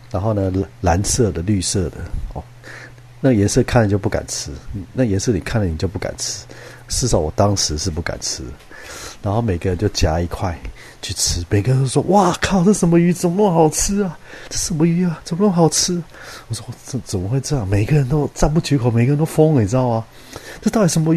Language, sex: Chinese, male